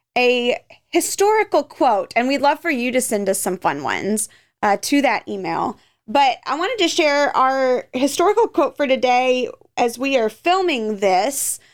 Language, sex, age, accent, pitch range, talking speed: English, female, 20-39, American, 210-280 Hz, 170 wpm